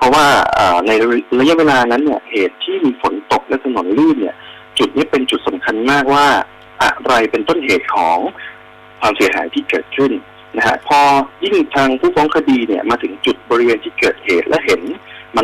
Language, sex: Thai, male